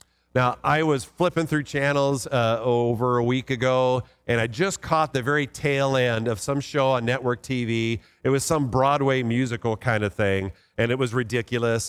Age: 40-59